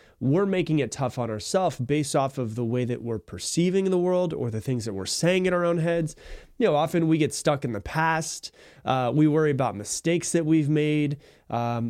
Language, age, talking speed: English, 30-49, 220 wpm